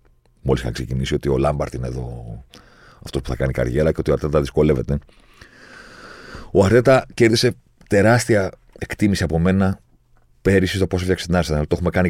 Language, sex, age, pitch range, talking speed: Greek, male, 40-59, 70-100 Hz, 170 wpm